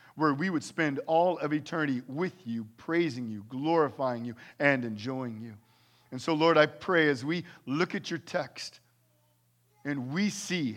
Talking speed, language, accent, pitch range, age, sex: 165 wpm, English, American, 115-170 Hz, 40-59, male